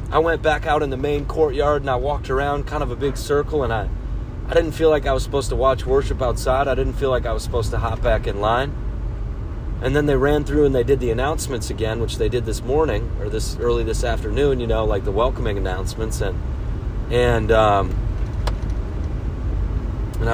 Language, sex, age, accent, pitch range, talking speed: English, male, 30-49, American, 95-125 Hz, 215 wpm